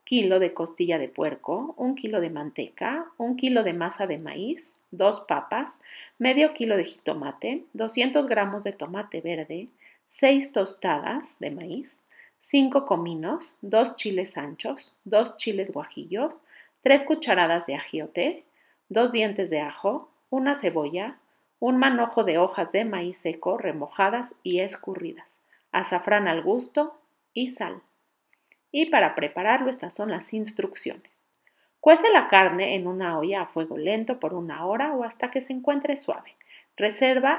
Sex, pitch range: female, 185-280 Hz